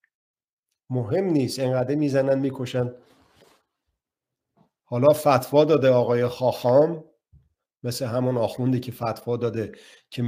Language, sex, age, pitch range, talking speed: Persian, male, 50-69, 115-145 Hz, 100 wpm